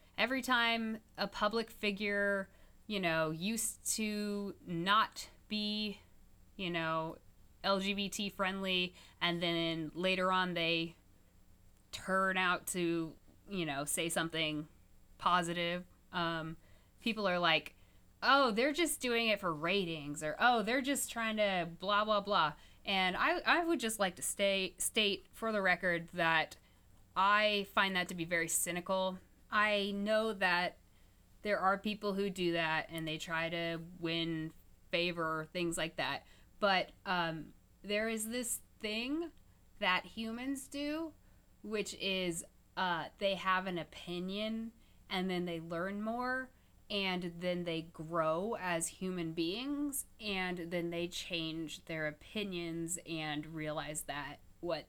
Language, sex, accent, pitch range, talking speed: English, female, American, 165-210 Hz, 135 wpm